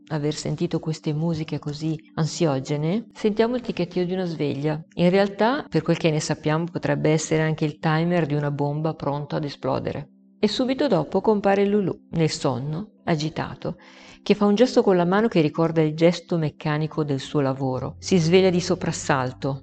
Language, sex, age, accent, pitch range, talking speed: Italian, female, 50-69, native, 150-185 Hz, 175 wpm